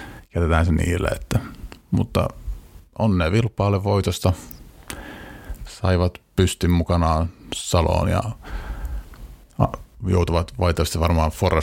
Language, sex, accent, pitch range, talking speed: Finnish, male, native, 80-100 Hz, 90 wpm